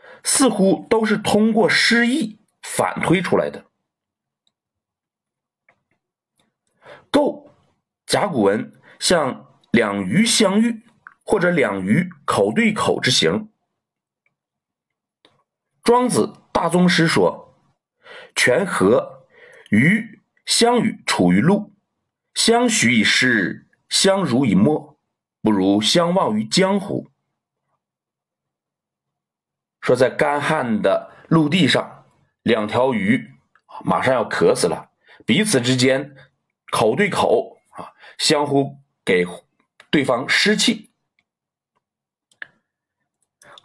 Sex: male